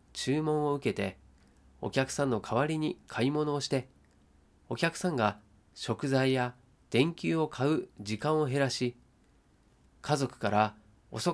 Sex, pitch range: male, 105-150 Hz